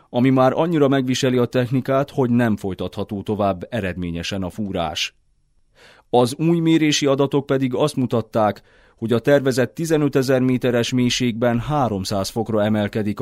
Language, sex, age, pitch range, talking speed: Hungarian, male, 30-49, 105-135 Hz, 135 wpm